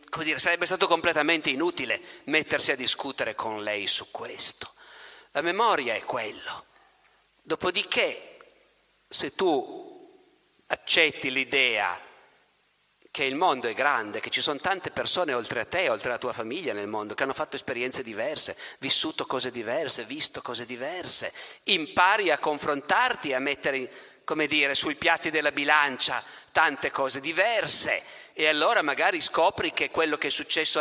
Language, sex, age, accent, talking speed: Italian, male, 50-69, native, 150 wpm